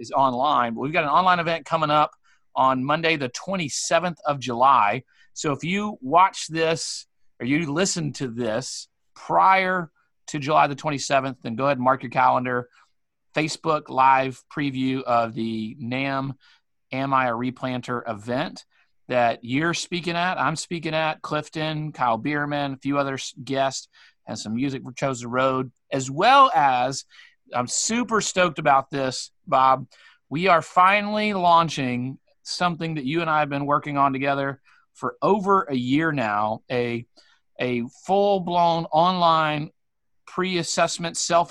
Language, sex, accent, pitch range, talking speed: English, male, American, 130-165 Hz, 150 wpm